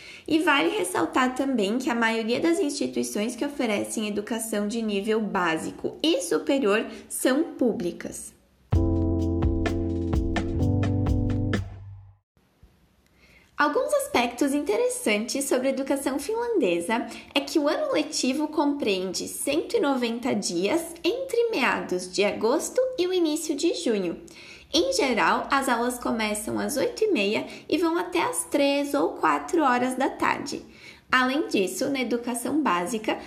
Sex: female